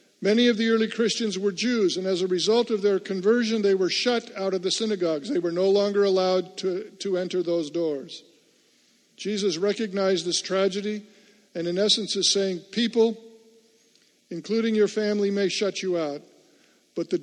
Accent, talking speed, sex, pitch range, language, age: American, 175 wpm, male, 175-215 Hz, English, 50-69